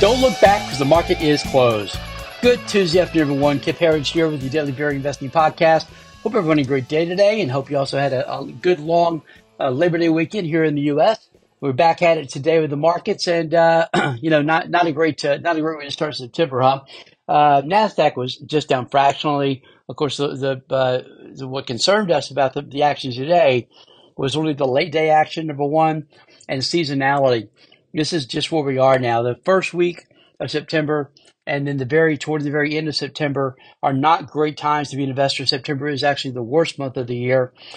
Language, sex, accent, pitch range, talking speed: English, male, American, 135-160 Hz, 220 wpm